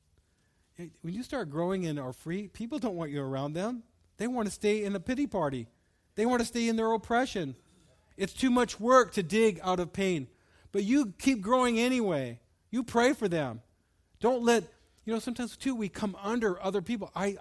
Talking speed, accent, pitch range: 200 wpm, American, 140-190 Hz